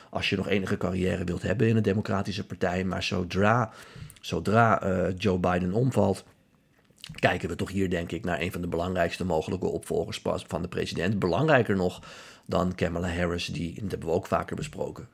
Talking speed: 180 wpm